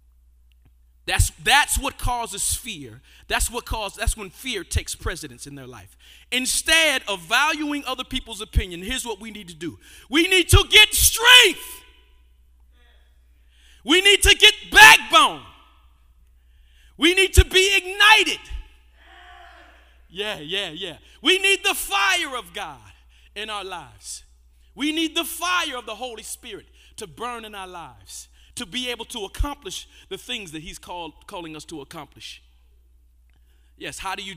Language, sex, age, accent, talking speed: English, male, 40-59, American, 150 wpm